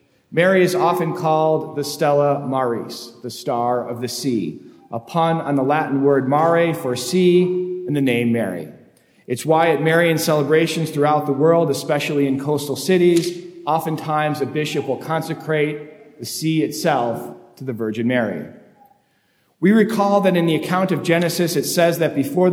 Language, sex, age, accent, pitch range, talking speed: English, male, 40-59, American, 135-170 Hz, 160 wpm